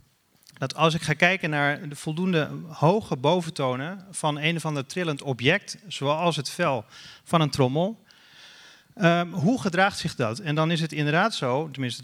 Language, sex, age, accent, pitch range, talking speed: Dutch, male, 40-59, Dutch, 130-170 Hz, 165 wpm